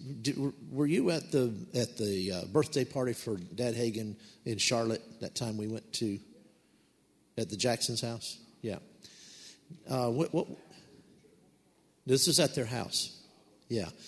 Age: 50-69